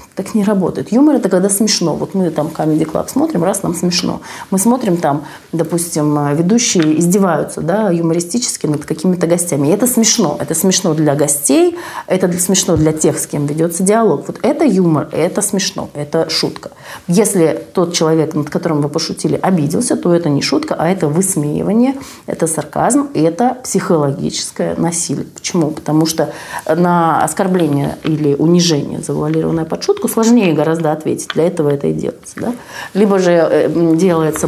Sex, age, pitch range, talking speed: female, 30-49, 155-205 Hz, 160 wpm